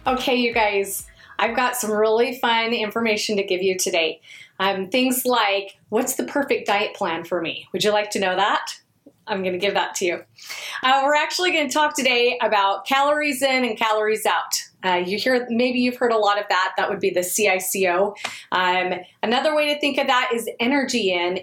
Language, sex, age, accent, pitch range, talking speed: English, female, 30-49, American, 210-275 Hz, 205 wpm